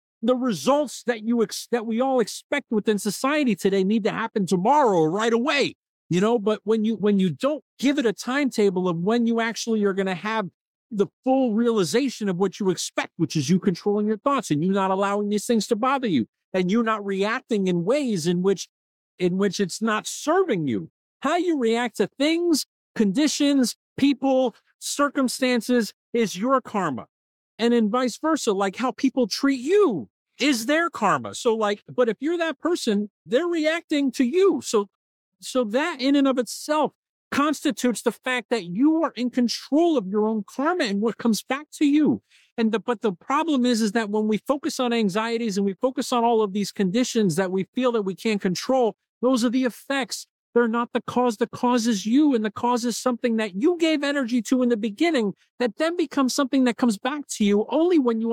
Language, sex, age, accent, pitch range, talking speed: English, male, 50-69, American, 210-275 Hz, 205 wpm